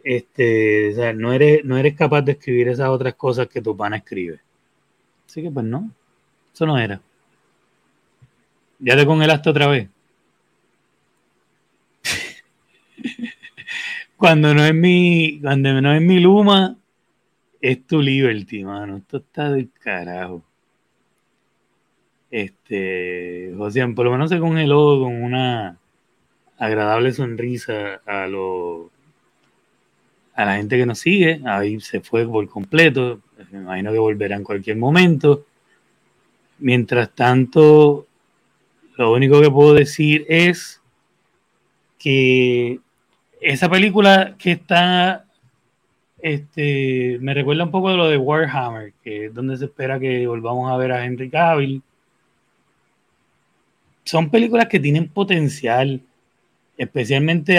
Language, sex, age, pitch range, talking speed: Spanish, male, 30-49, 115-160 Hz, 125 wpm